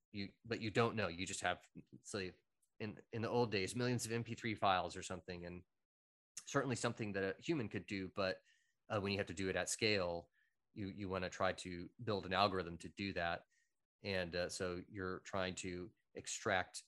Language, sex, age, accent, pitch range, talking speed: English, male, 30-49, American, 90-110 Hz, 205 wpm